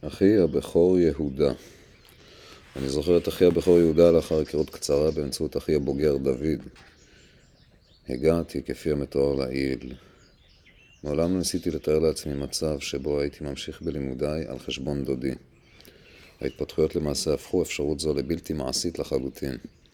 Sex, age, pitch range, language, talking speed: male, 40-59, 70-80 Hz, Hebrew, 120 wpm